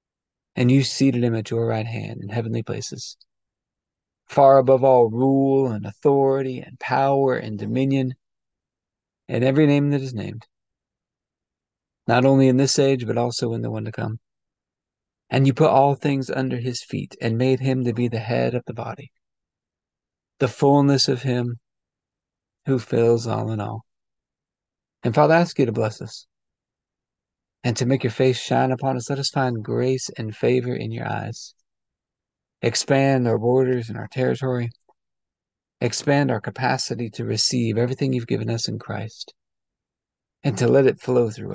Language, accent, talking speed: English, American, 165 wpm